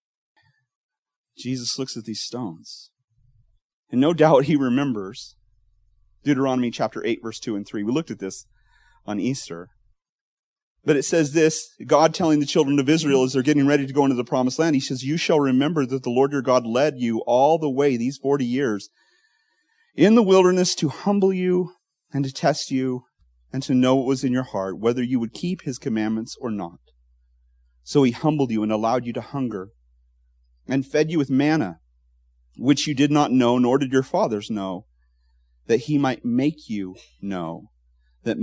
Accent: American